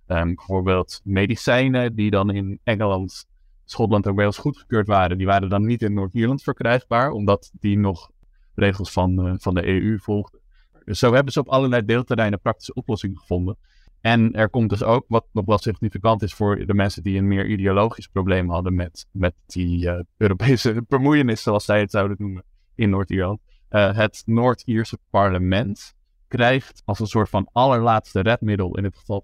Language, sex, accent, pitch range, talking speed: Dutch, male, Dutch, 95-115 Hz, 175 wpm